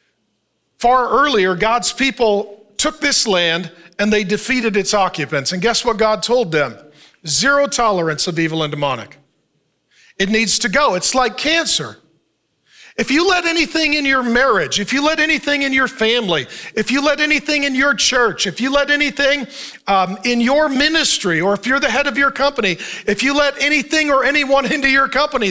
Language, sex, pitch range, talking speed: English, male, 185-270 Hz, 180 wpm